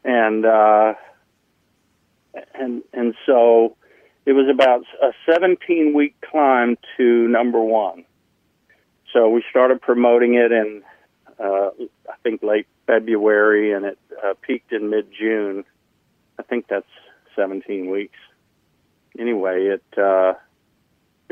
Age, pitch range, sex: 50-69, 100-120 Hz, male